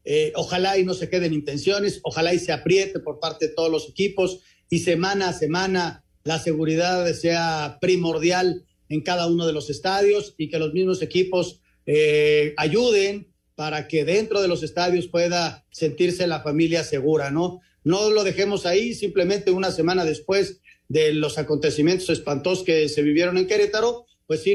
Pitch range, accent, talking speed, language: 155-190 Hz, Mexican, 170 wpm, Spanish